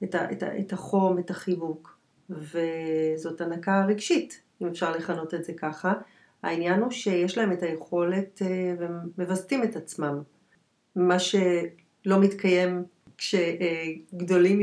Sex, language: female, Hebrew